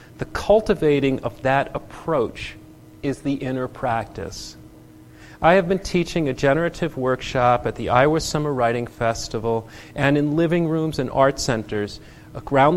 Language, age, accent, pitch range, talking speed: English, 40-59, American, 110-140 Hz, 140 wpm